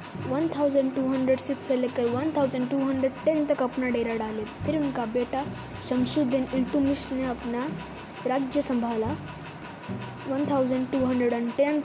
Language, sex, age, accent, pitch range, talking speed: Hindi, female, 20-39, native, 250-285 Hz, 90 wpm